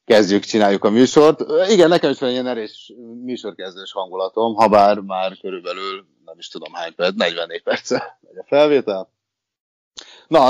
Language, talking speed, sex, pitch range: Hungarian, 150 wpm, male, 95-145 Hz